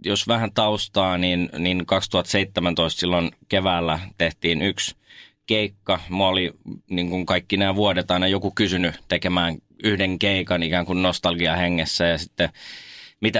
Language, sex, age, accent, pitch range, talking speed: Finnish, male, 20-39, native, 85-100 Hz, 135 wpm